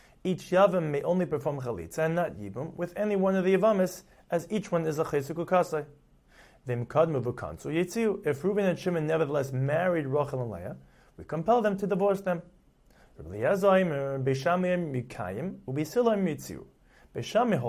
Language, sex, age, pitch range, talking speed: English, male, 30-49, 130-175 Hz, 125 wpm